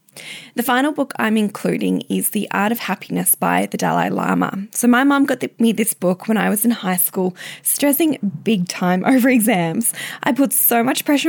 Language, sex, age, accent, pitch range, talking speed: English, female, 10-29, Australian, 205-265 Hz, 195 wpm